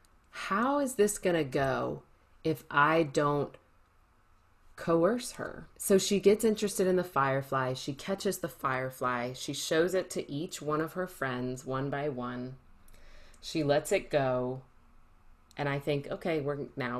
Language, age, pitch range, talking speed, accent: English, 30-49, 130-190 Hz, 150 wpm, American